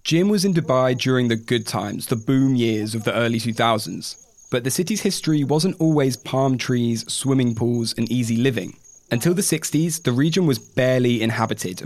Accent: British